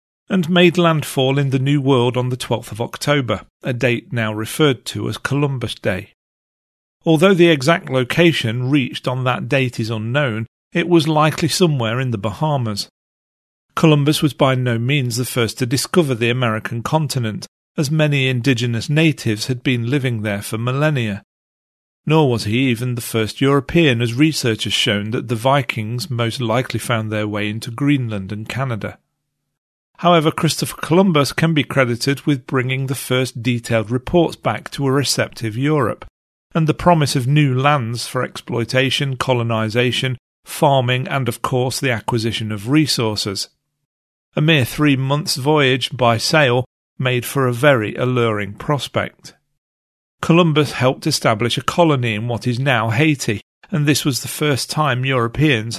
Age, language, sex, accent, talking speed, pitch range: 40-59, English, male, British, 155 wpm, 115-145 Hz